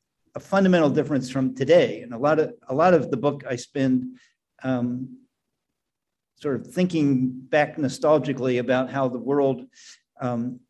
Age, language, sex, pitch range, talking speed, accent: 50-69, English, male, 125-145 Hz, 150 wpm, American